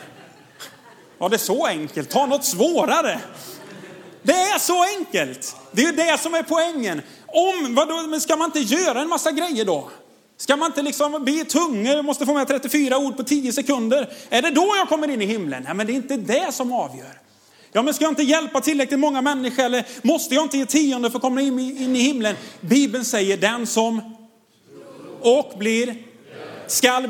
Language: Swedish